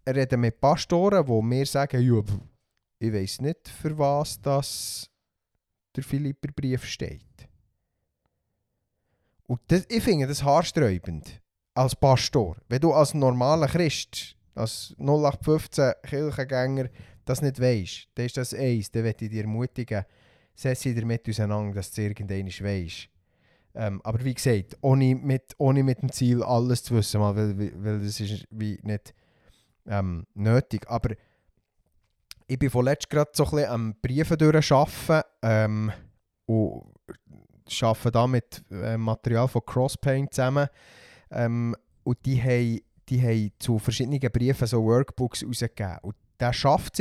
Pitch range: 105-140 Hz